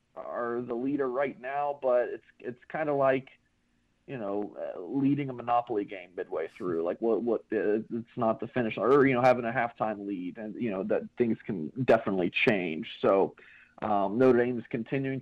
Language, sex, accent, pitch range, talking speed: English, male, American, 110-130 Hz, 195 wpm